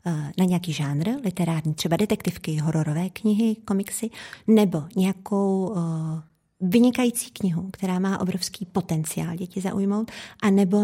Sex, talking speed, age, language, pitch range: female, 115 wpm, 30-49, Czech, 180-215 Hz